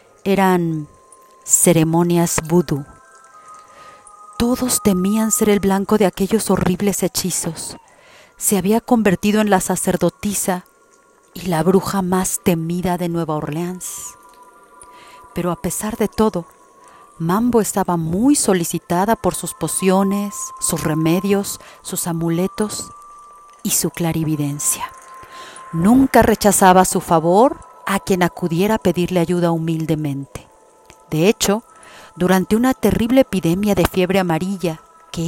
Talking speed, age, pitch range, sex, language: 110 wpm, 40-59, 175-220 Hz, female, Spanish